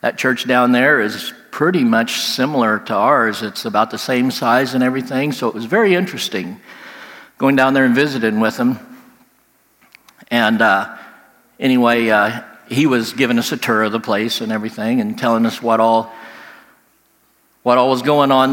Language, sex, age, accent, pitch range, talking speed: English, male, 60-79, American, 120-160 Hz, 170 wpm